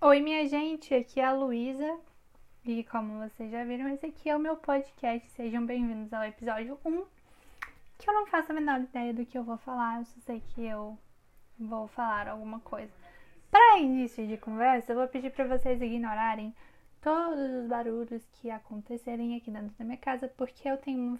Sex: female